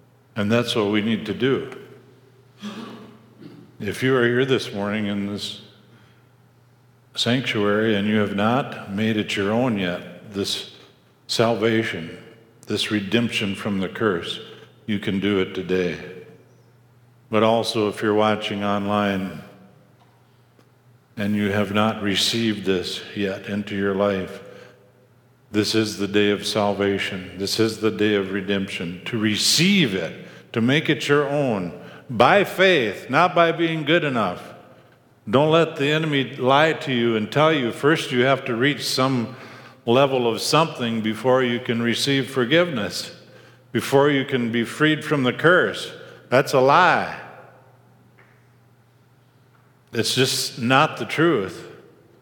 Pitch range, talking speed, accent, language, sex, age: 105-130 Hz, 140 wpm, American, English, male, 50-69